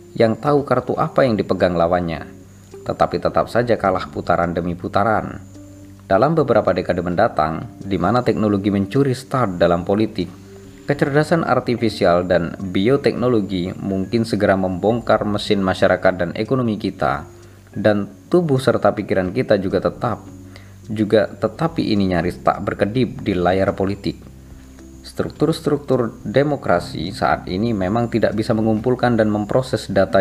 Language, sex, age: Indonesian, male, 20-39